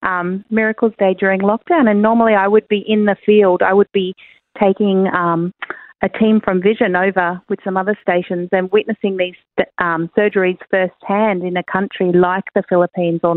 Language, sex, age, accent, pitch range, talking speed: English, female, 40-59, Australian, 180-215 Hz, 180 wpm